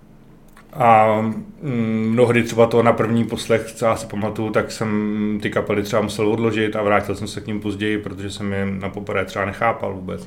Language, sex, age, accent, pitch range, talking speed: Czech, male, 30-49, native, 100-120 Hz, 185 wpm